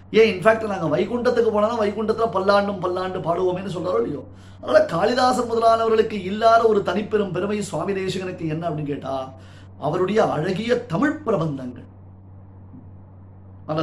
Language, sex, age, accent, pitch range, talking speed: Tamil, male, 30-49, native, 135-215 Hz, 115 wpm